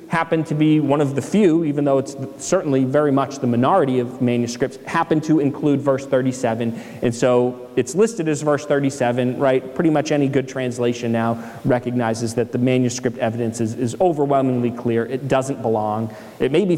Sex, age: male, 30-49